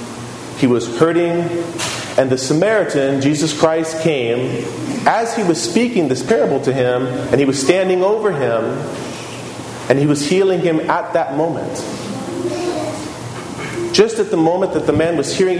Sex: male